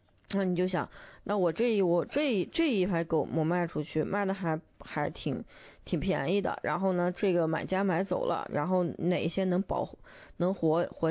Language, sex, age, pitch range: Chinese, female, 20-39, 165-200 Hz